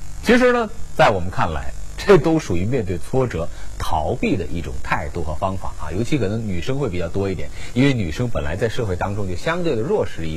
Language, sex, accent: Chinese, male, native